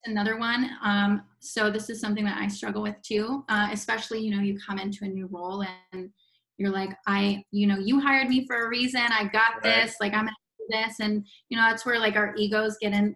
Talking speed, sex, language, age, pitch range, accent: 235 wpm, female, English, 20-39, 205-245 Hz, American